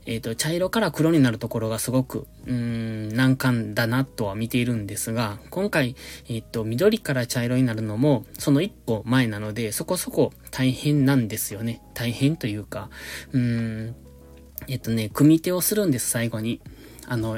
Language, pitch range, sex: Japanese, 110-150 Hz, male